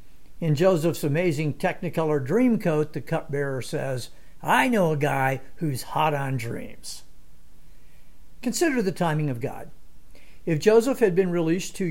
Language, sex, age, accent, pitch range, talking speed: English, male, 60-79, American, 135-195 Hz, 140 wpm